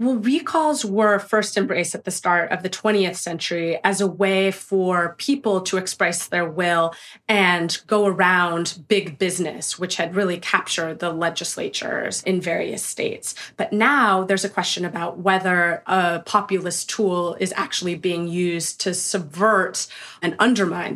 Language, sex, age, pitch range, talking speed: English, female, 20-39, 175-205 Hz, 150 wpm